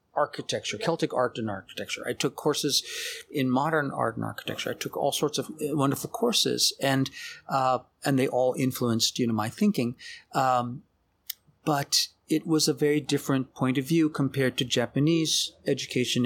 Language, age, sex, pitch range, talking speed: English, 40-59, male, 125-160 Hz, 160 wpm